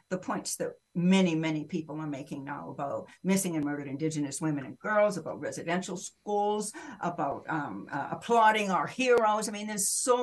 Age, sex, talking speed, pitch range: 60-79, female, 175 wpm, 165-200 Hz